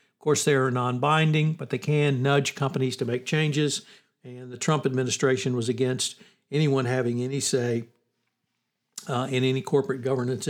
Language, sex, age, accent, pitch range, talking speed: English, male, 60-79, American, 130-155 Hz, 160 wpm